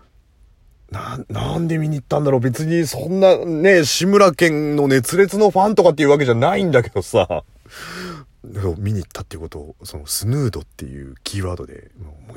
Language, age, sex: Japanese, 40-59, male